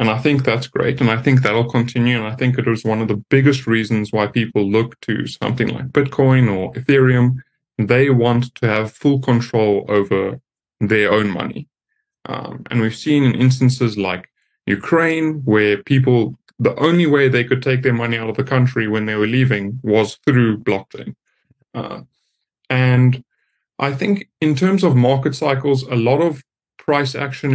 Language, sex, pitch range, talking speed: English, male, 115-135 Hz, 180 wpm